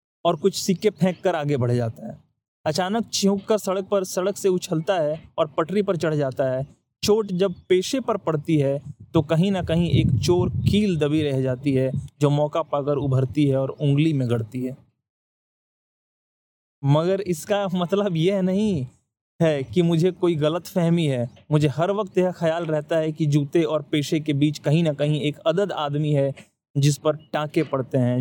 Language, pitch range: Hindi, 140-170 Hz